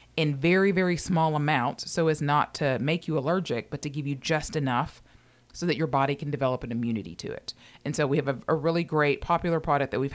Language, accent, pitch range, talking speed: English, American, 130-150 Hz, 235 wpm